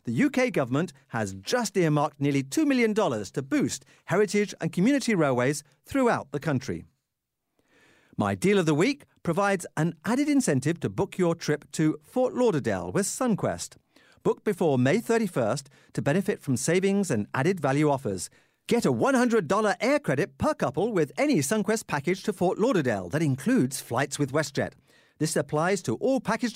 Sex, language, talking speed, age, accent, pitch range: male, English, 165 wpm, 50-69, British, 140-215 Hz